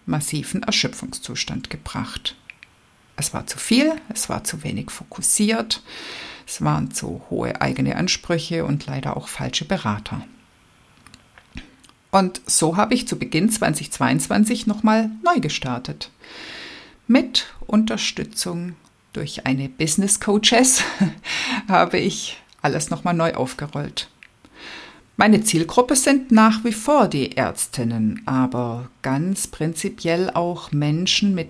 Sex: female